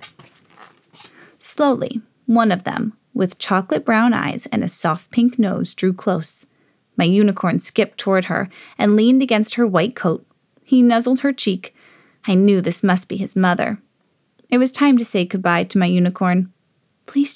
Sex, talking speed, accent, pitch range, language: female, 165 wpm, American, 190-255 Hz, English